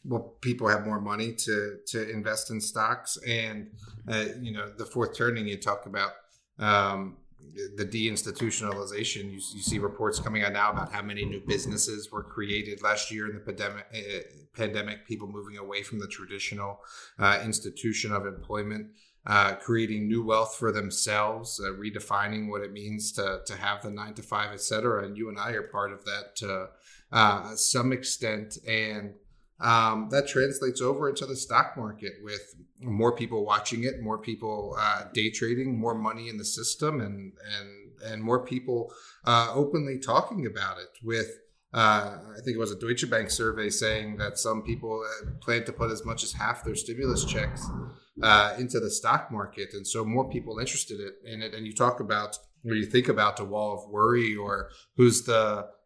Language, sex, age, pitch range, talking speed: English, male, 30-49, 105-115 Hz, 185 wpm